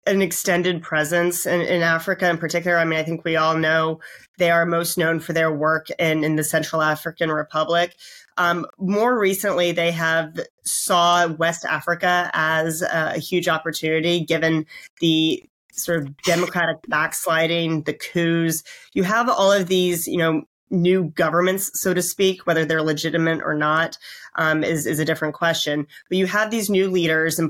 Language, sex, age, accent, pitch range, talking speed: English, female, 30-49, American, 160-185 Hz, 170 wpm